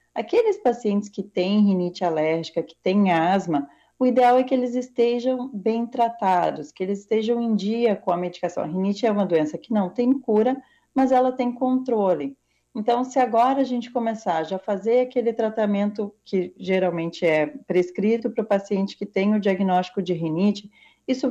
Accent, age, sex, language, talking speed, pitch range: Brazilian, 40-59, female, Portuguese, 175 wpm, 180-235 Hz